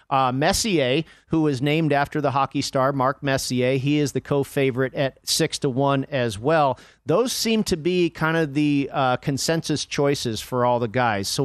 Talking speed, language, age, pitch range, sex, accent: 195 wpm, English, 40-59, 135-160 Hz, male, American